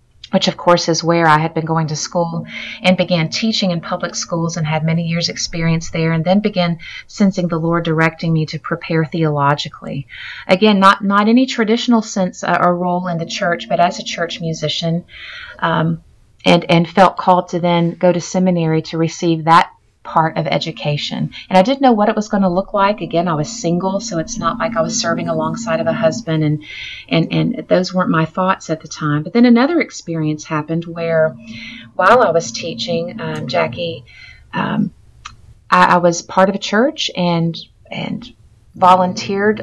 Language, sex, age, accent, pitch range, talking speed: English, female, 30-49, American, 165-190 Hz, 190 wpm